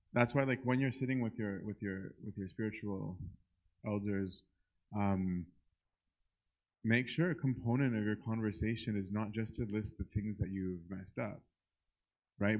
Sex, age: male, 20-39